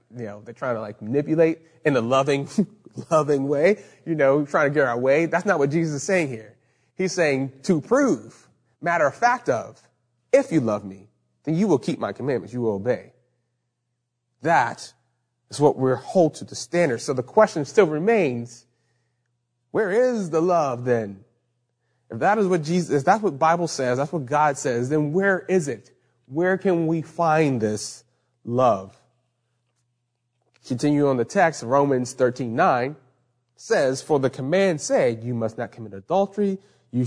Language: English